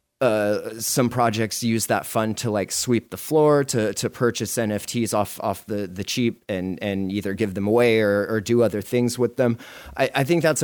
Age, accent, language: 30-49, American, English